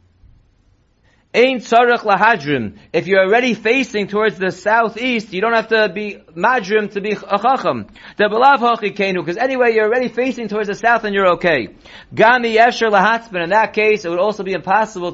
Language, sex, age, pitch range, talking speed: English, male, 30-49, 185-230 Hz, 160 wpm